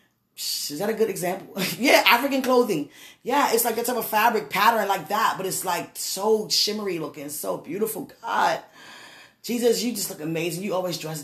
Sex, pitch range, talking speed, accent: female, 175-220 Hz, 185 wpm, American